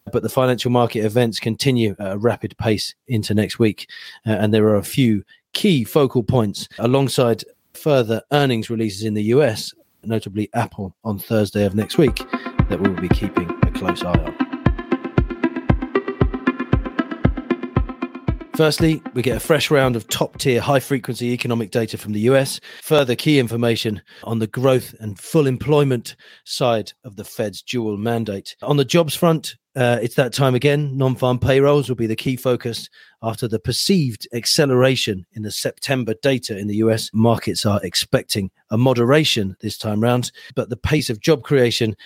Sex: male